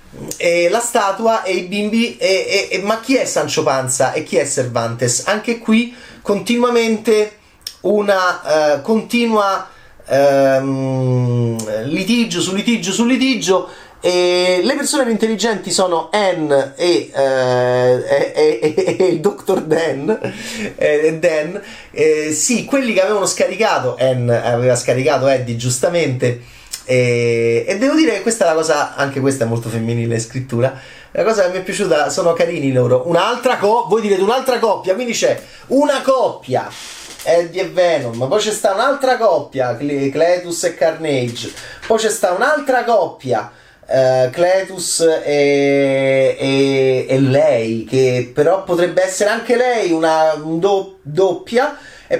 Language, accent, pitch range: Italian, native, 135-225 Hz